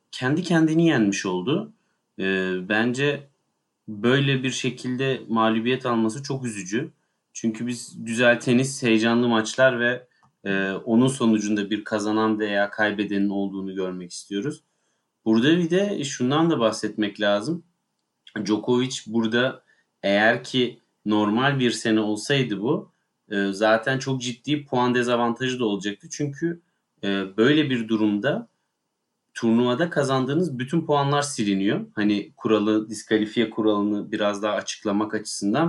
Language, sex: Turkish, male